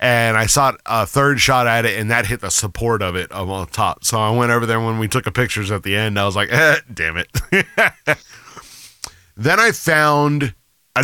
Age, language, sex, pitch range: 30-49, English, male, 95-125 Hz